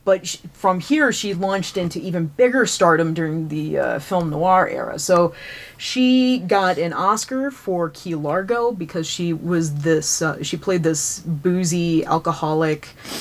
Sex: female